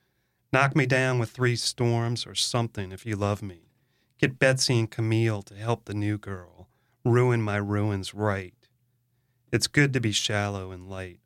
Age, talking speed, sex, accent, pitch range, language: 30-49, 170 wpm, male, American, 105-125 Hz, English